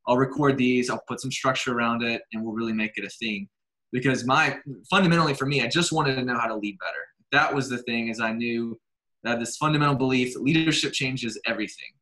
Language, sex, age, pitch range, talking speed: English, male, 20-39, 110-135 Hz, 225 wpm